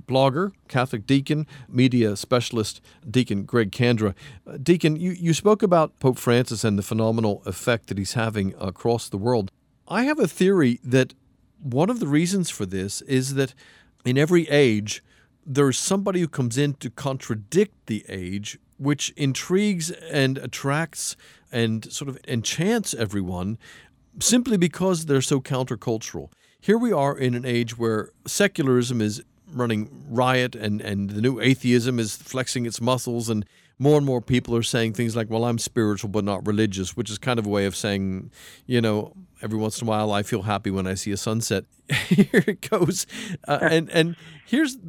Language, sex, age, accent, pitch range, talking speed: English, male, 50-69, American, 110-150 Hz, 170 wpm